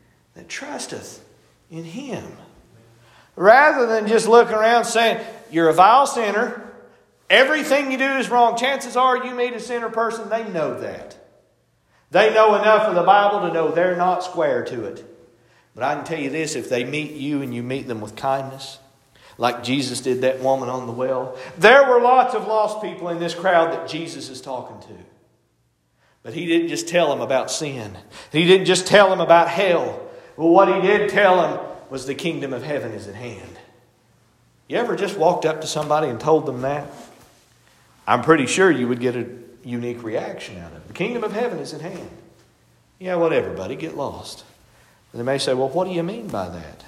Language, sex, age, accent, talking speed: English, male, 50-69, American, 200 wpm